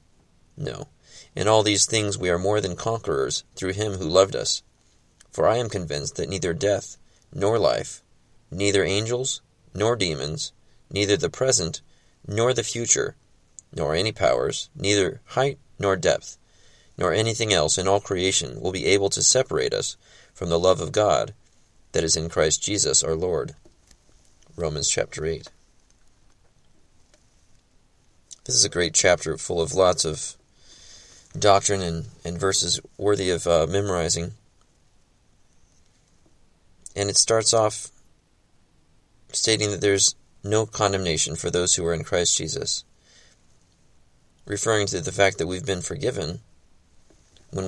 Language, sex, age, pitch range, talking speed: English, male, 30-49, 85-105 Hz, 140 wpm